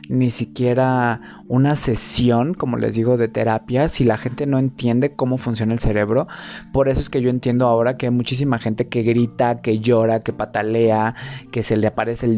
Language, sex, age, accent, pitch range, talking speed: Spanish, male, 30-49, Mexican, 110-130 Hz, 195 wpm